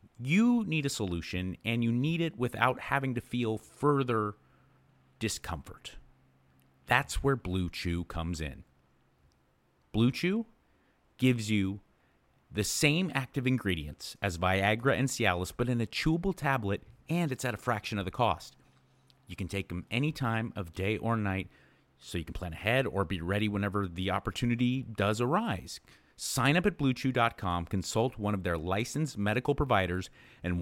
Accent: American